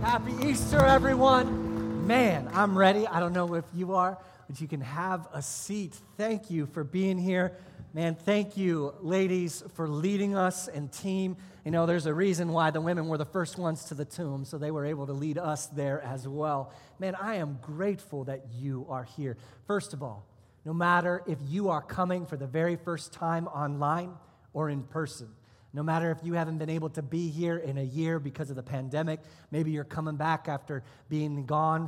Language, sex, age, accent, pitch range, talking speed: English, male, 30-49, American, 140-170 Hz, 200 wpm